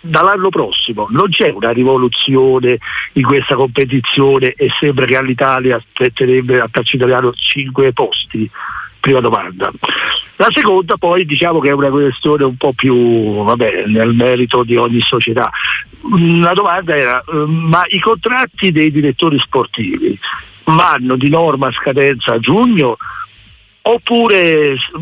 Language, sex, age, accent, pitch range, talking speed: Italian, male, 50-69, native, 125-155 Hz, 125 wpm